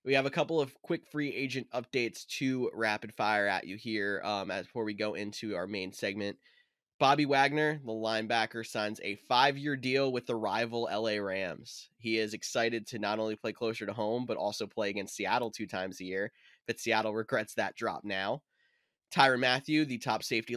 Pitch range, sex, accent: 105-135 Hz, male, American